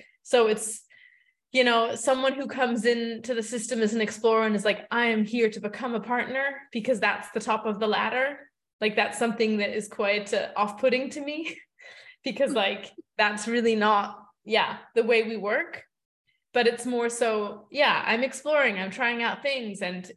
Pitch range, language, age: 205-250 Hz, English, 20-39